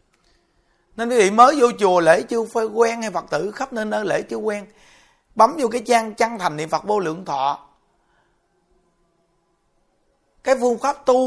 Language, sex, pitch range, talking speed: Vietnamese, male, 180-245 Hz, 180 wpm